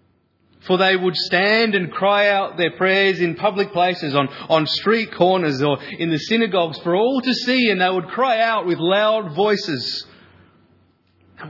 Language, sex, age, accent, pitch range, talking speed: English, male, 30-49, Australian, 145-200 Hz, 170 wpm